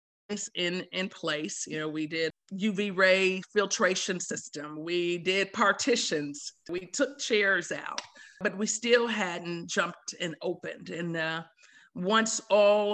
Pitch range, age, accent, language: 165-195 Hz, 50-69, American, English